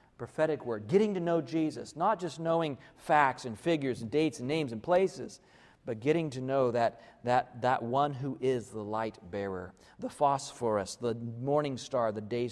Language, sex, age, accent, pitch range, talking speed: English, male, 40-59, American, 130-175 Hz, 180 wpm